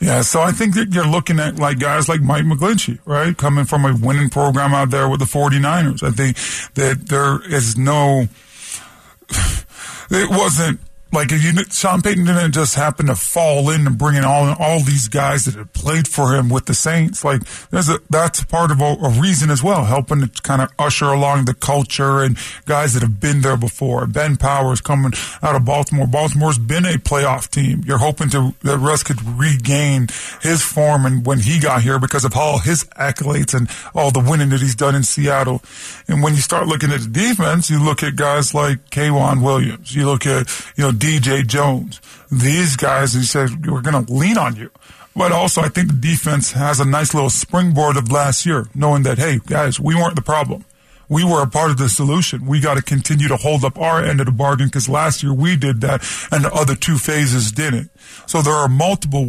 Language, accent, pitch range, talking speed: English, American, 135-155 Hz, 215 wpm